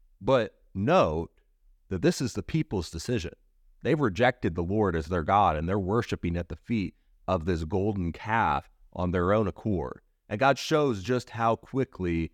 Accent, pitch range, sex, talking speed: American, 85-120 Hz, male, 170 wpm